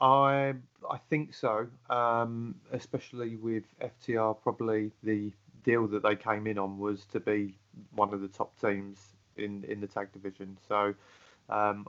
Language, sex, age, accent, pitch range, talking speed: English, male, 30-49, British, 100-115 Hz, 155 wpm